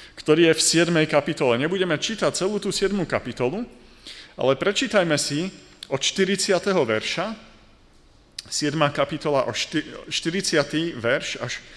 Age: 40-59